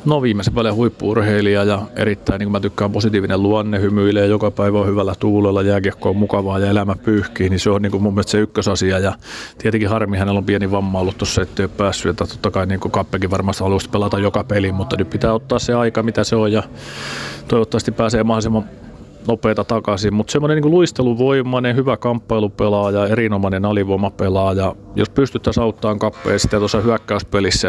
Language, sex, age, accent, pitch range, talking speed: Finnish, male, 30-49, native, 95-110 Hz, 180 wpm